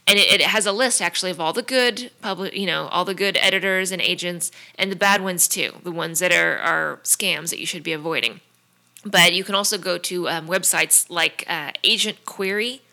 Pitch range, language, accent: 175-195 Hz, English, American